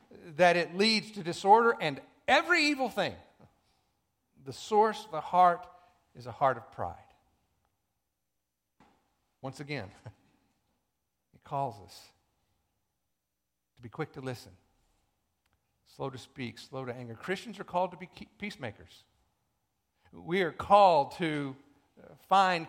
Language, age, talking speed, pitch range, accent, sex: English, 50-69, 120 wpm, 130-185 Hz, American, male